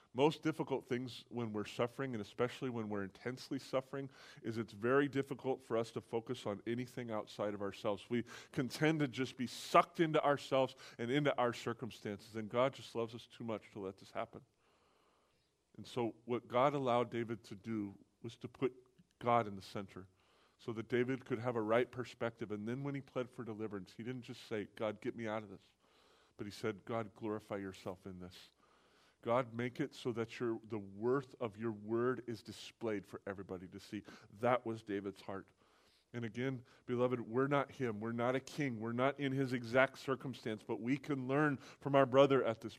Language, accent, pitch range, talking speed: English, American, 105-130 Hz, 200 wpm